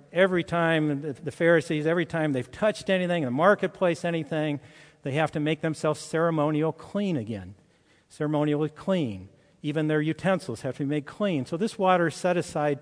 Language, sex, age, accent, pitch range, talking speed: English, male, 50-69, American, 135-185 Hz, 175 wpm